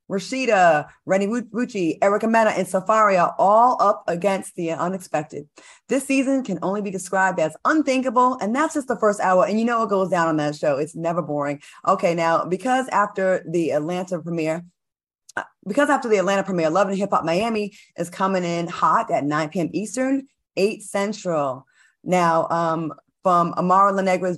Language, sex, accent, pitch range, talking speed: English, female, American, 170-220 Hz, 170 wpm